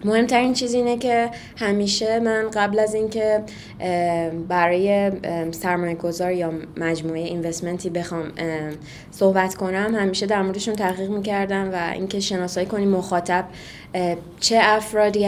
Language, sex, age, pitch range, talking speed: Persian, female, 20-39, 175-205 Hz, 120 wpm